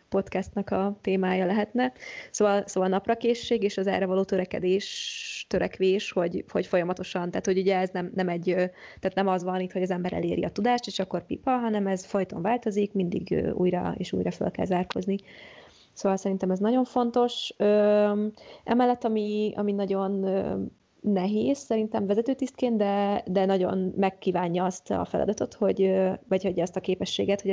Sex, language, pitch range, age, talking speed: female, Hungarian, 185-205 Hz, 20-39, 160 wpm